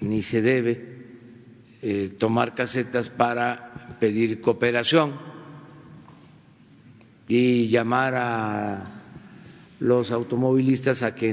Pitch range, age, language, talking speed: 115-145 Hz, 50-69, Spanish, 85 wpm